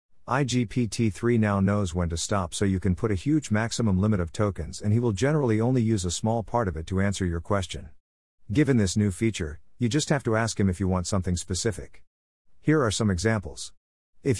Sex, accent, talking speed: male, American, 215 wpm